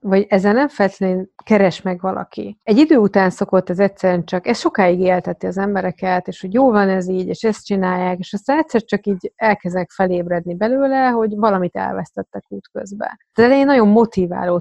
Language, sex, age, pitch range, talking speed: Hungarian, female, 30-49, 180-200 Hz, 180 wpm